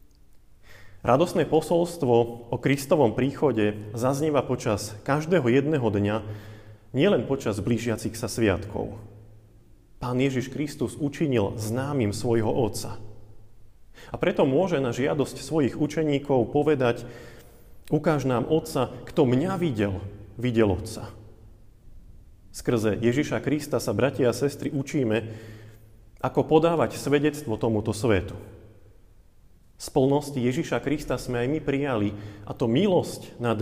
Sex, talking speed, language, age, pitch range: male, 110 wpm, Slovak, 30-49, 110-140 Hz